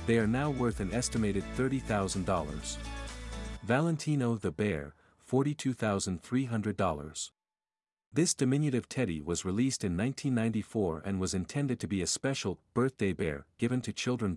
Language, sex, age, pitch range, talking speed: English, male, 50-69, 95-125 Hz, 125 wpm